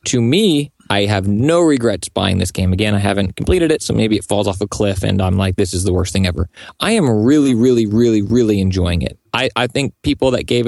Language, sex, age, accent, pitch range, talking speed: English, male, 20-39, American, 110-155 Hz, 245 wpm